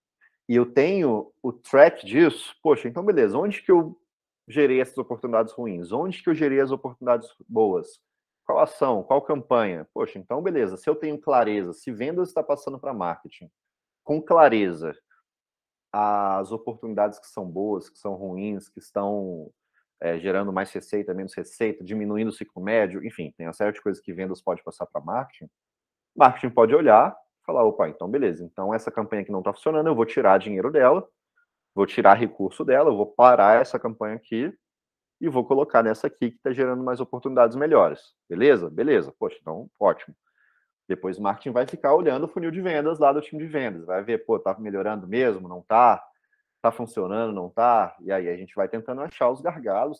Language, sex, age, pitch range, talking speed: Portuguese, male, 30-49, 100-150 Hz, 185 wpm